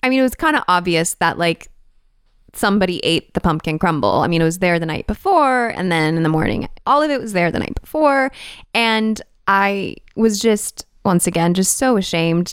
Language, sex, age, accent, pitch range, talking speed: English, female, 20-39, American, 175-245 Hz, 210 wpm